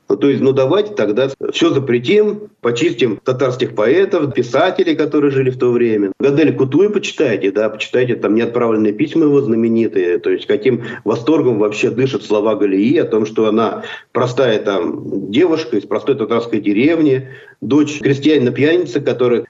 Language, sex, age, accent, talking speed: Russian, male, 50-69, native, 150 wpm